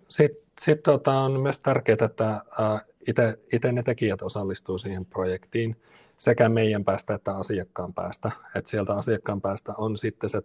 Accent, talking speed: native, 140 wpm